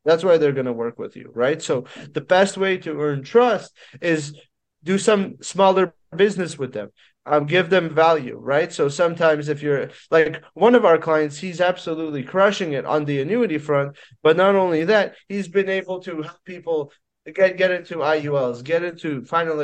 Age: 30-49